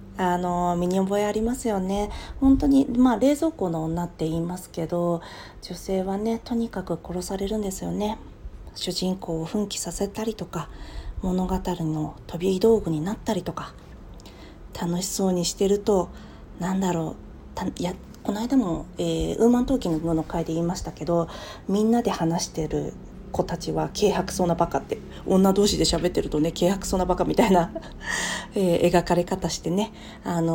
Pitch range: 170-210 Hz